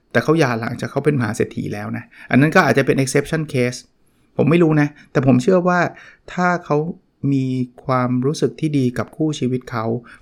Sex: male